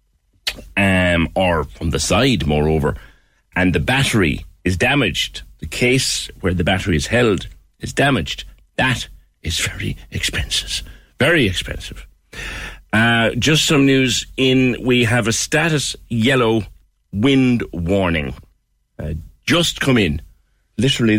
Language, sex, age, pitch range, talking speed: English, male, 60-79, 80-115 Hz, 120 wpm